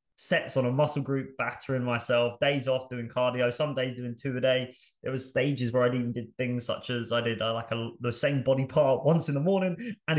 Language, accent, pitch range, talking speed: English, British, 115-135 Hz, 245 wpm